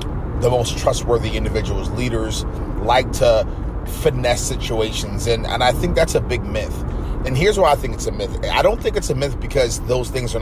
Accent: American